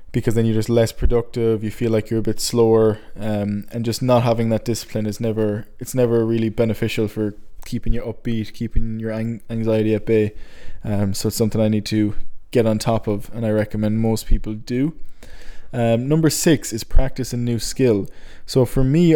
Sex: male